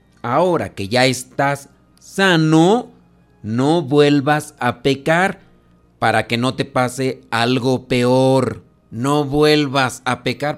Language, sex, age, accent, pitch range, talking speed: Spanish, male, 40-59, Mexican, 120-145 Hz, 115 wpm